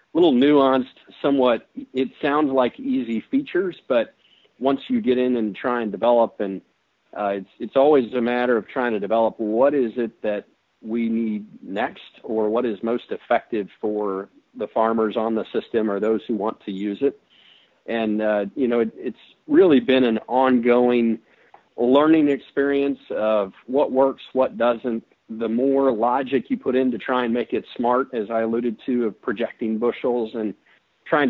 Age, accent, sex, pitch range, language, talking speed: 40-59, American, male, 115-135 Hz, English, 175 wpm